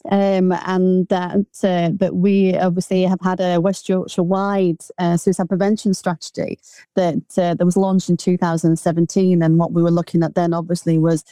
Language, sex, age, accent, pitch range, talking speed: English, female, 30-49, British, 170-195 Hz, 175 wpm